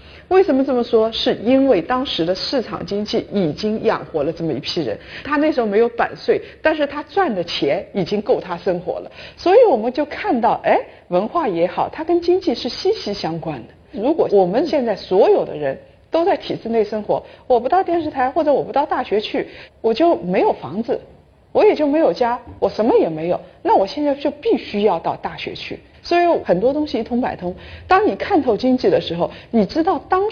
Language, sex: Chinese, female